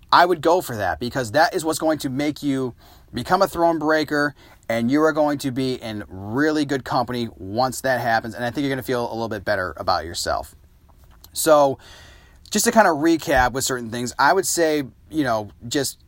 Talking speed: 215 wpm